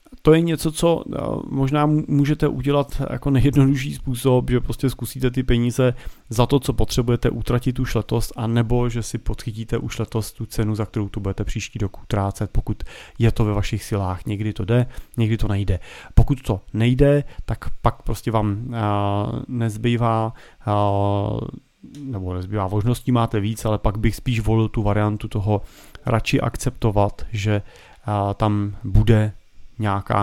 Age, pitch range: 30-49, 100-120 Hz